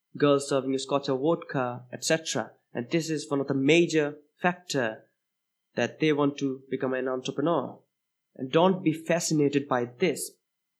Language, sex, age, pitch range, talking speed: English, male, 20-39, 135-170 Hz, 155 wpm